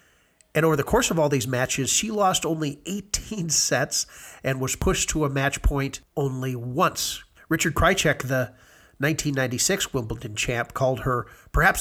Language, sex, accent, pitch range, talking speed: English, male, American, 125-155 Hz, 160 wpm